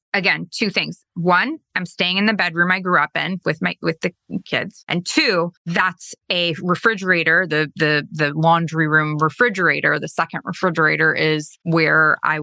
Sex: female